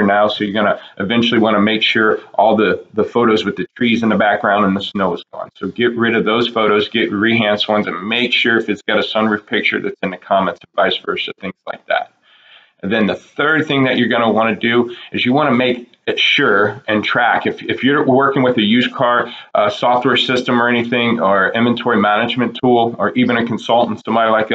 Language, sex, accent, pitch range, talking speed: English, male, American, 105-125 Hz, 235 wpm